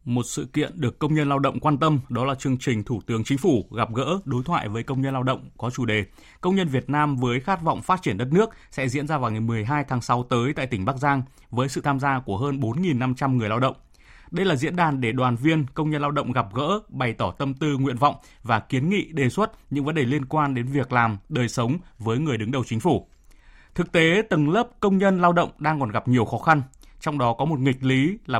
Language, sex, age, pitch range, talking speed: Vietnamese, male, 20-39, 120-150 Hz, 265 wpm